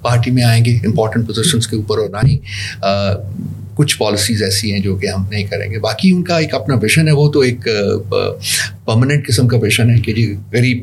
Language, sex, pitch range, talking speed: Urdu, male, 105-130 Hz, 215 wpm